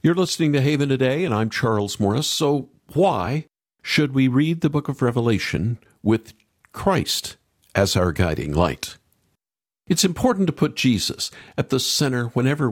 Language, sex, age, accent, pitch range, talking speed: English, male, 50-69, American, 105-155 Hz, 155 wpm